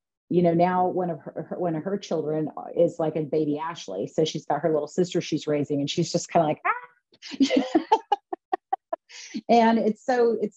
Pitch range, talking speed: 155-190 Hz, 195 wpm